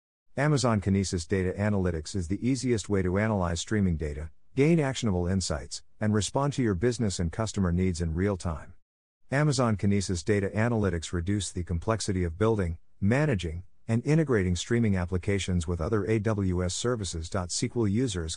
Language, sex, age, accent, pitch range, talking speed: English, male, 50-69, American, 90-115 Hz, 150 wpm